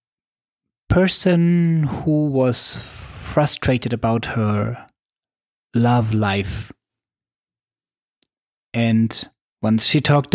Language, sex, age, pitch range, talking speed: English, male, 30-49, 110-145 Hz, 70 wpm